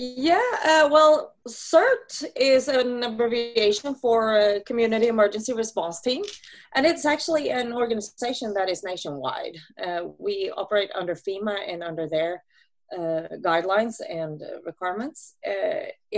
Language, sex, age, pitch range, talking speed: English, female, 30-49, 195-255 Hz, 125 wpm